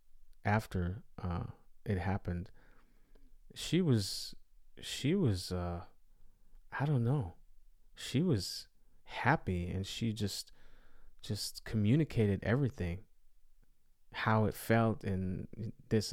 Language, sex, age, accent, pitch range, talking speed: English, male, 30-49, American, 90-120 Hz, 95 wpm